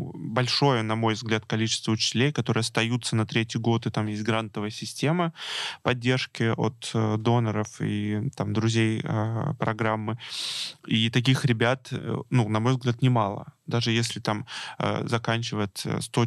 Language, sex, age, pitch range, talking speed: Russian, male, 20-39, 110-130 Hz, 135 wpm